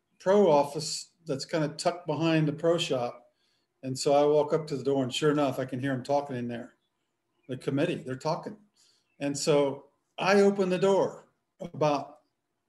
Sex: male